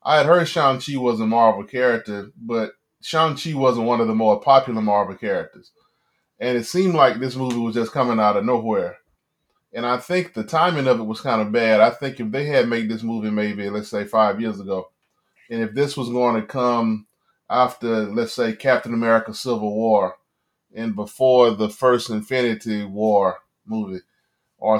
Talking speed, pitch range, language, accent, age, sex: 185 wpm, 110-135 Hz, English, American, 30-49, male